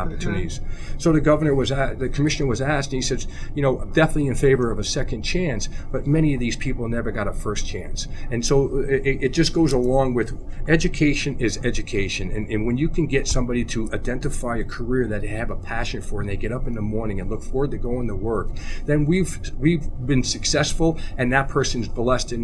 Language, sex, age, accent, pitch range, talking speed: English, male, 50-69, American, 105-130 Hz, 225 wpm